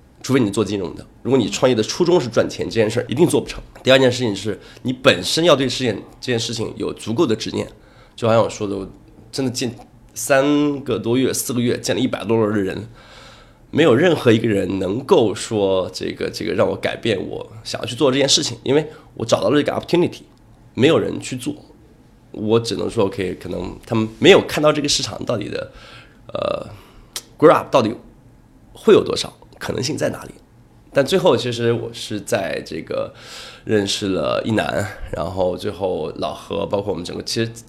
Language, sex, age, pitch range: Chinese, male, 20-39, 110-145 Hz